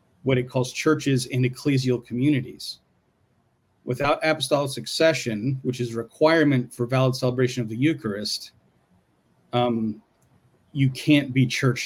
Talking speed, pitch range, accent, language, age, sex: 120 wpm, 115-135 Hz, American, English, 40-59, male